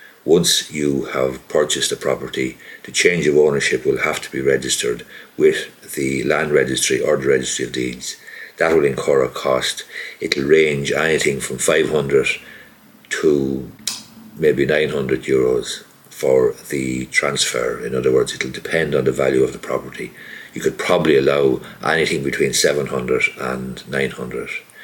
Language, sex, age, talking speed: English, male, 60-79, 150 wpm